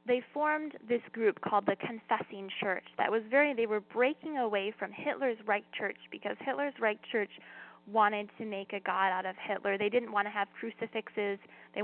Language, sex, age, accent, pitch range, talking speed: English, female, 10-29, American, 200-235 Hz, 195 wpm